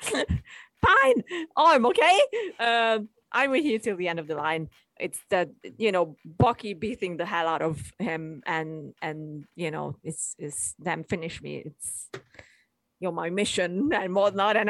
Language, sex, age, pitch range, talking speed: English, female, 30-49, 155-205 Hz, 170 wpm